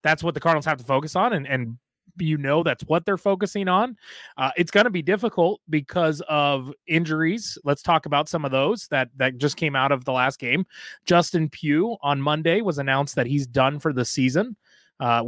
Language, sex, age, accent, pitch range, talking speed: English, male, 20-39, American, 125-160 Hz, 210 wpm